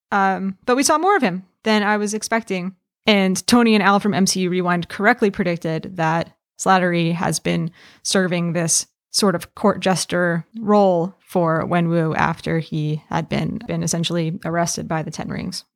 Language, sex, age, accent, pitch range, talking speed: English, female, 20-39, American, 175-215 Hz, 170 wpm